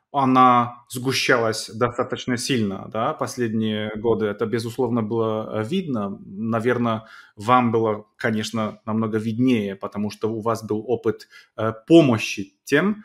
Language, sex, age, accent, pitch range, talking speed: Russian, male, 30-49, native, 110-140 Hz, 115 wpm